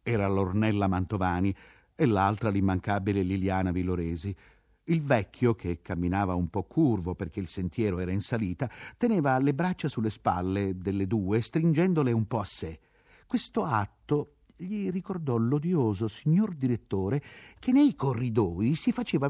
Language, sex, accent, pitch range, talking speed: Italian, male, native, 95-160 Hz, 140 wpm